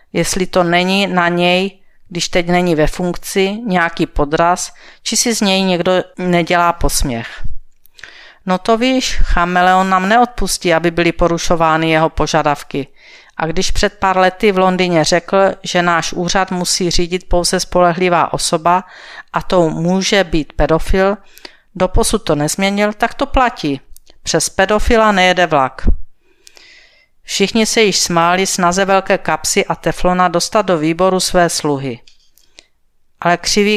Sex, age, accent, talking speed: female, 50-69, native, 135 wpm